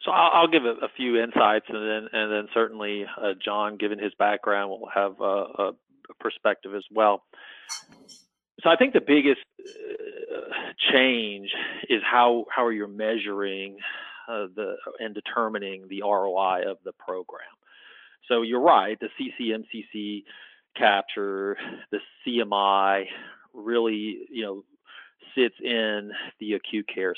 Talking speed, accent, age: 130 wpm, American, 40-59